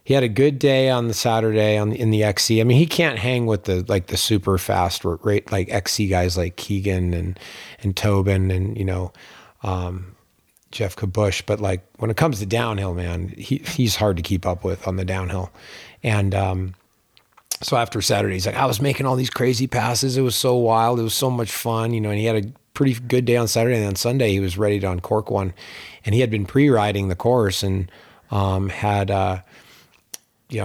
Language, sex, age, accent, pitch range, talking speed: English, male, 30-49, American, 95-115 Hz, 225 wpm